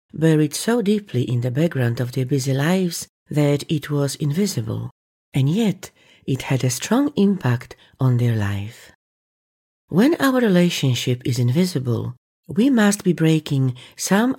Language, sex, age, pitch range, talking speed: English, female, 40-59, 125-170 Hz, 140 wpm